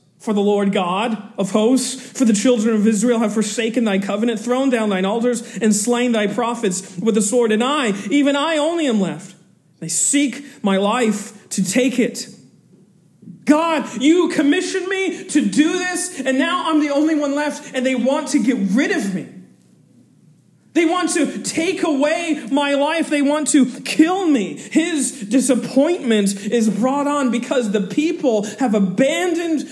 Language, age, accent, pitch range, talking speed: English, 40-59, American, 185-260 Hz, 170 wpm